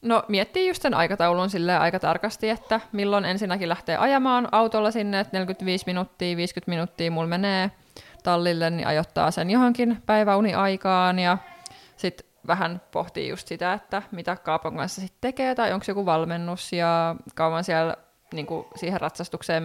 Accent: native